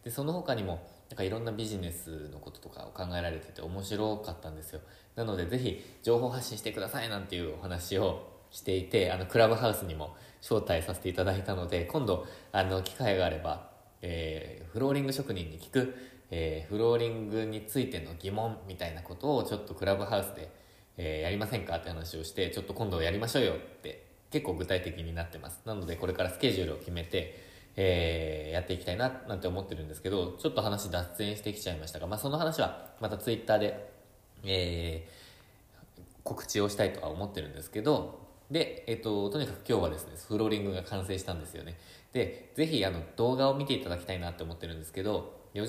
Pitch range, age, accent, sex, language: 85-110 Hz, 20-39, native, male, Japanese